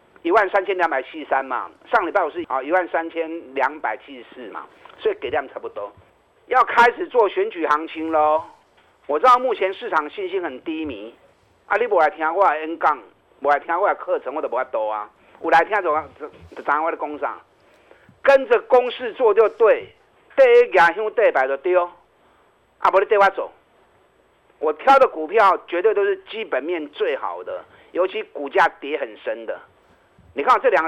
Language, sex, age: Chinese, male, 50-69